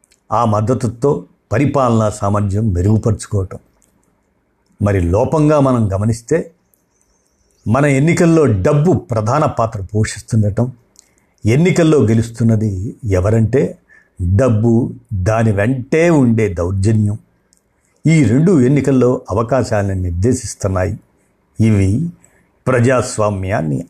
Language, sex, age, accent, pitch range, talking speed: Telugu, male, 60-79, native, 95-125 Hz, 75 wpm